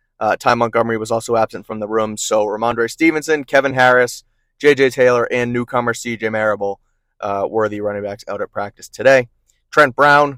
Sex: male